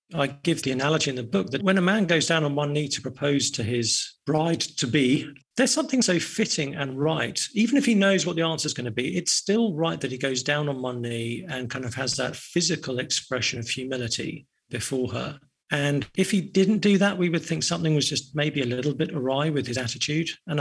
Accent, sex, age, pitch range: British, male, 50-69, 130-165 Hz